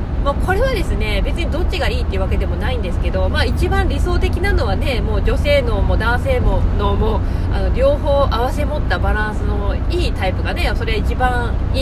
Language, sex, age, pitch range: Japanese, female, 20-39, 85-95 Hz